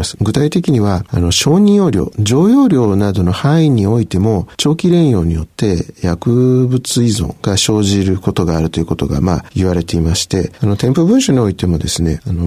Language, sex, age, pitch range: Japanese, male, 50-69, 95-145 Hz